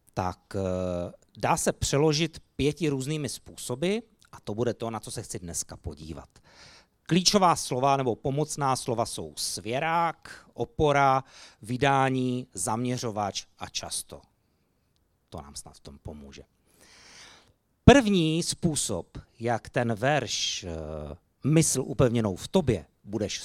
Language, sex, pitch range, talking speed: Czech, male, 105-150 Hz, 115 wpm